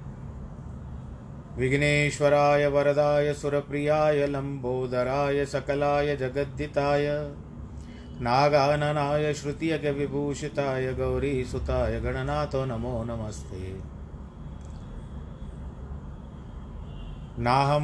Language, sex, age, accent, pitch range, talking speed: Hindi, male, 30-49, native, 110-145 Hz, 45 wpm